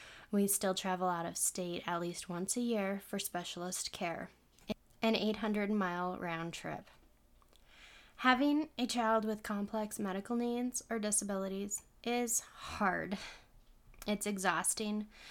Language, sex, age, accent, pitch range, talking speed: English, female, 10-29, American, 180-220 Hz, 125 wpm